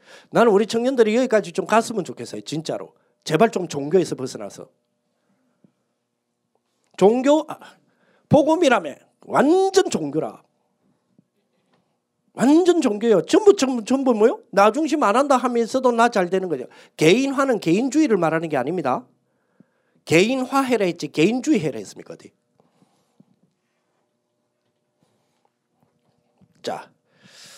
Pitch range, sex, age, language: 185-245 Hz, male, 40-59, Korean